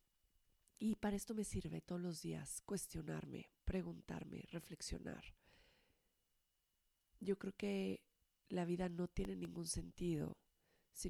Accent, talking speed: Mexican, 115 wpm